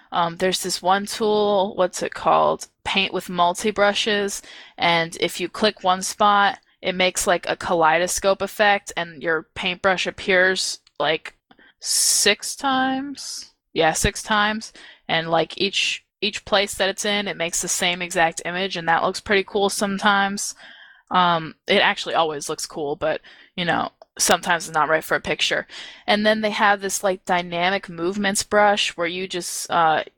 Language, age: English, 10-29